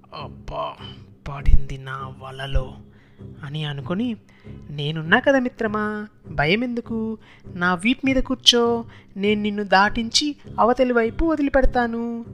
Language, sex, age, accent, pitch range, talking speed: Telugu, female, 20-39, native, 170-230 Hz, 100 wpm